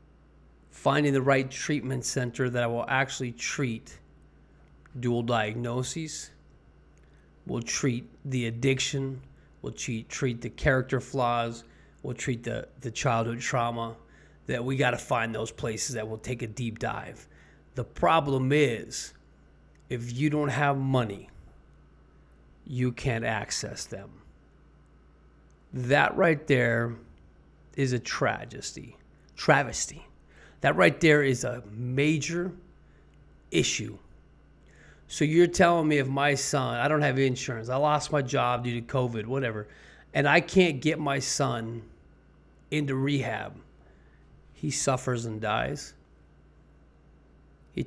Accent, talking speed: American, 125 wpm